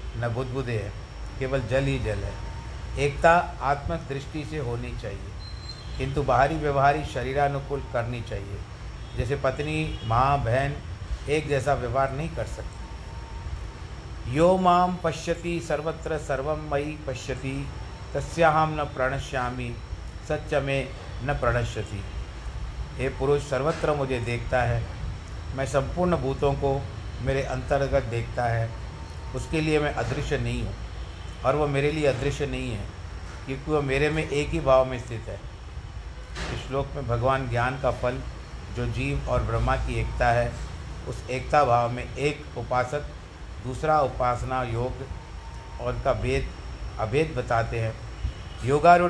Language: Hindi